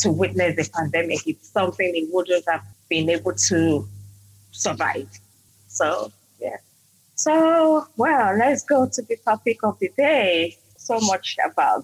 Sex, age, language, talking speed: female, 20-39, English, 140 wpm